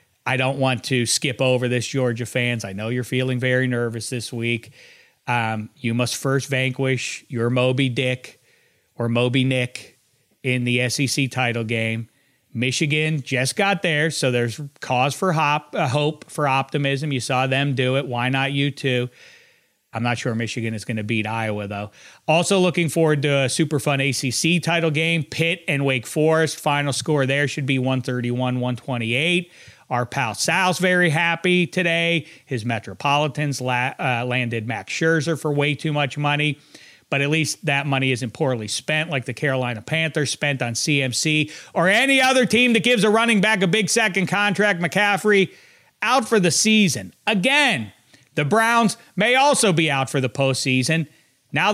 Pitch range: 125-160 Hz